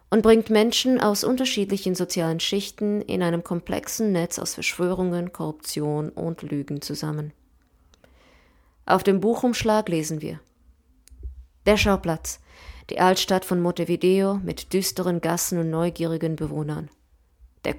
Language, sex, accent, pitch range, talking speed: German, female, German, 155-210 Hz, 120 wpm